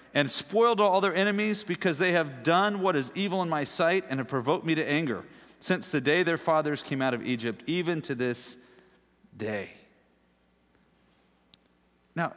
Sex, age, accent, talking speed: male, 50-69, American, 170 wpm